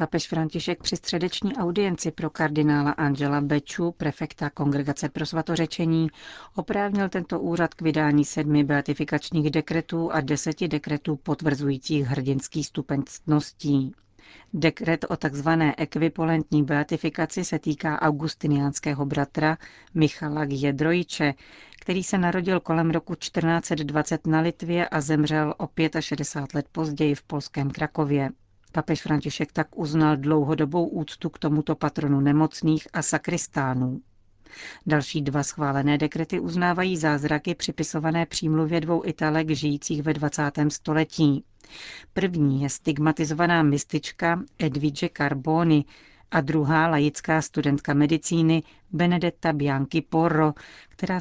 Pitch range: 145-165 Hz